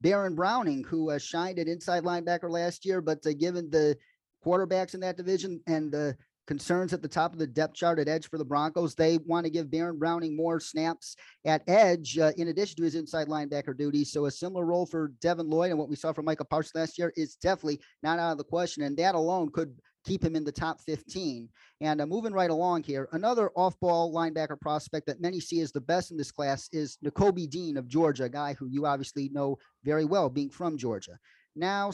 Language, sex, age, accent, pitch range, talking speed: English, male, 30-49, American, 150-175 Hz, 225 wpm